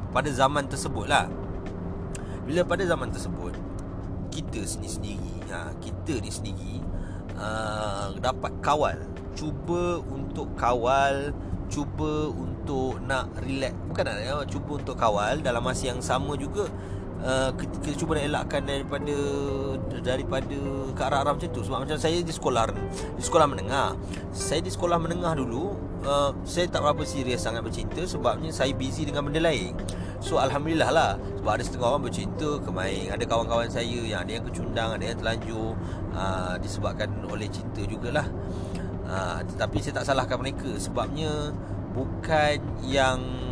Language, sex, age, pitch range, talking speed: Malay, male, 30-49, 95-130 Hz, 140 wpm